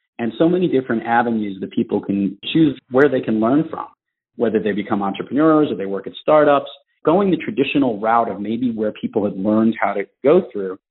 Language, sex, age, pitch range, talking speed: English, male, 40-59, 105-150 Hz, 205 wpm